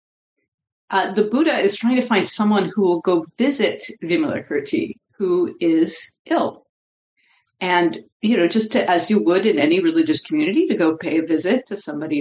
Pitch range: 160-230 Hz